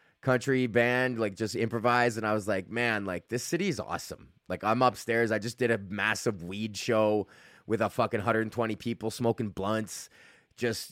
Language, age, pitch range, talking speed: English, 20-39, 105-125 Hz, 180 wpm